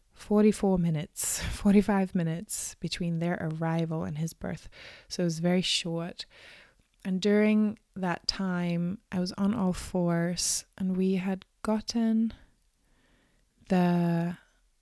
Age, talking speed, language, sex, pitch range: 20-39, 115 wpm, English, female, 175-200 Hz